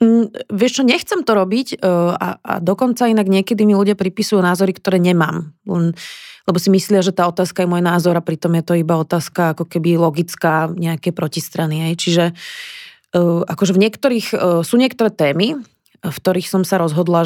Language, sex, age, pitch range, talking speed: Slovak, female, 20-39, 165-190 Hz, 170 wpm